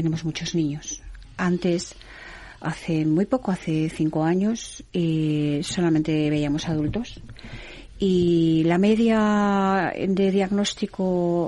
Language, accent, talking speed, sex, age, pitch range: Spanish, Spanish, 100 wpm, female, 40-59, 155-185 Hz